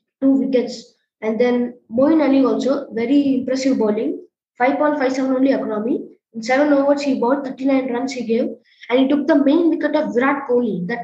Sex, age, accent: female, 20-39, Indian